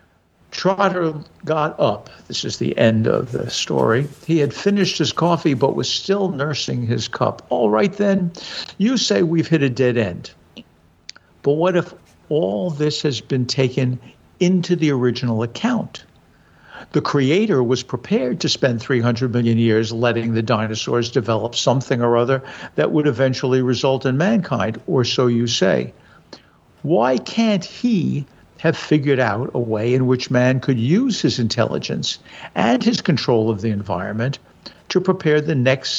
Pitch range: 120-170 Hz